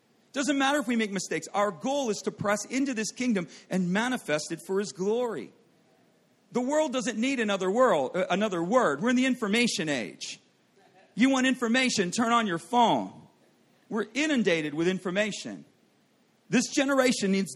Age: 40-59